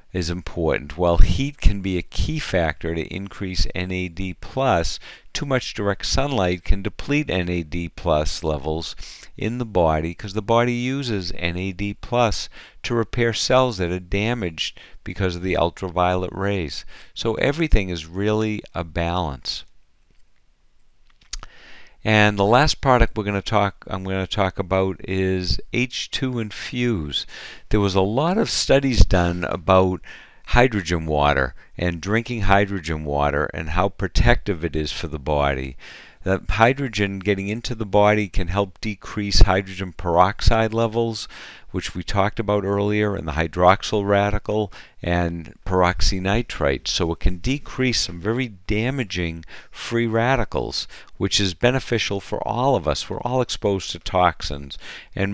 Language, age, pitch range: English, 50-69, 85-110 Hz